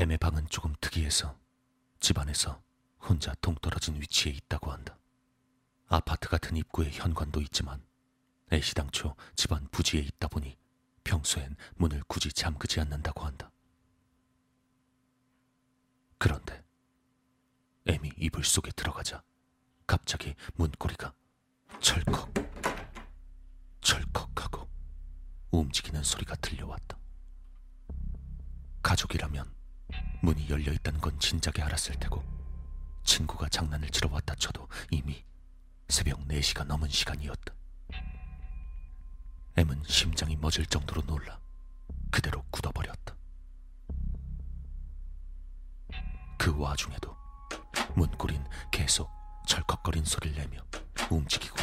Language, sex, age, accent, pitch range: Korean, male, 40-59, native, 65-85 Hz